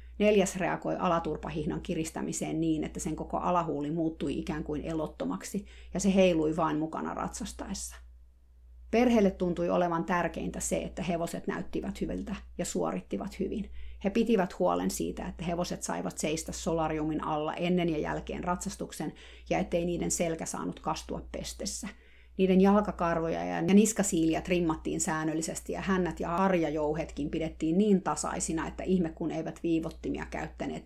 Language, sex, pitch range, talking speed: Finnish, female, 155-190 Hz, 140 wpm